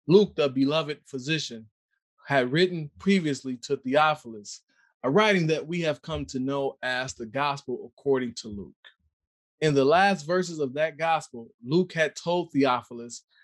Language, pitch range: English, 135-180 Hz